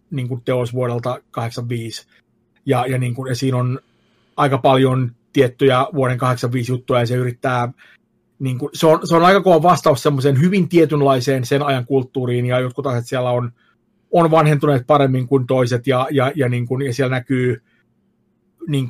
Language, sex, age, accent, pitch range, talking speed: Finnish, male, 30-49, native, 125-155 Hz, 160 wpm